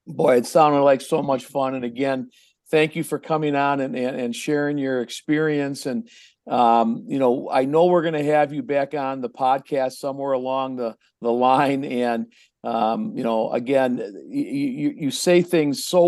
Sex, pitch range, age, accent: male, 120-150 Hz, 50-69, American